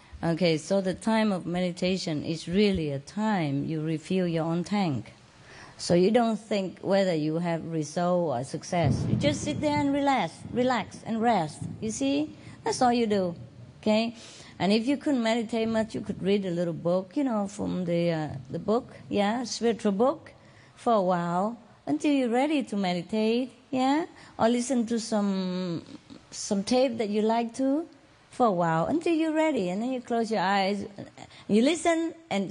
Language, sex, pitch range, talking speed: English, female, 175-255 Hz, 180 wpm